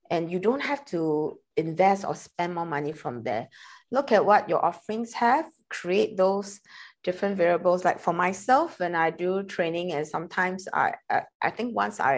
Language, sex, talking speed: English, female, 180 wpm